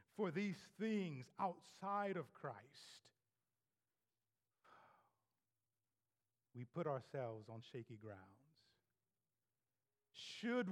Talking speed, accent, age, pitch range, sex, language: 75 wpm, American, 50-69, 115-190 Hz, male, English